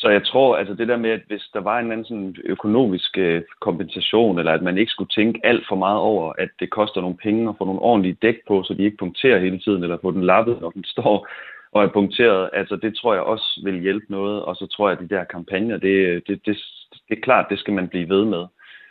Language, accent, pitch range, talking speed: Danish, native, 90-105 Hz, 265 wpm